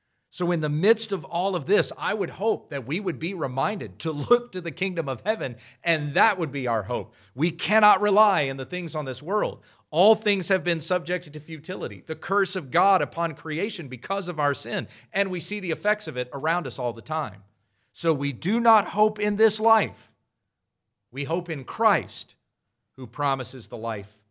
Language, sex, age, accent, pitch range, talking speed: English, male, 40-59, American, 120-195 Hz, 205 wpm